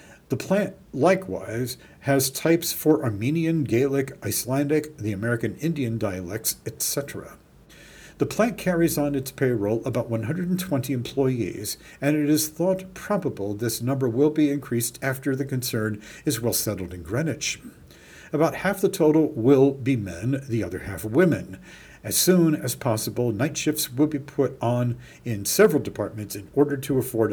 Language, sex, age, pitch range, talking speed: English, male, 50-69, 115-155 Hz, 150 wpm